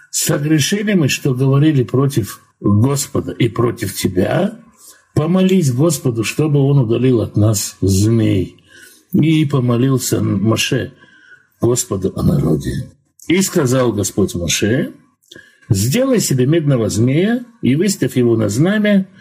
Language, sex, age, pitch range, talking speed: Russian, male, 60-79, 115-165 Hz, 110 wpm